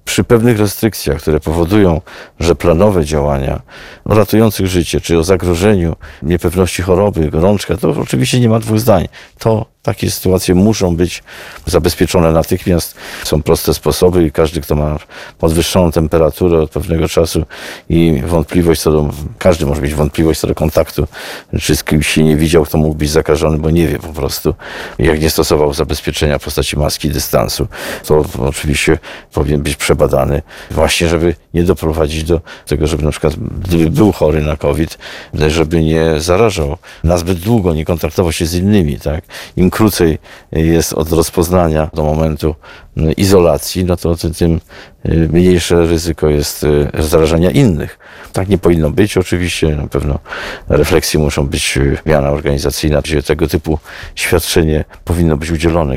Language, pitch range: Polish, 75-90 Hz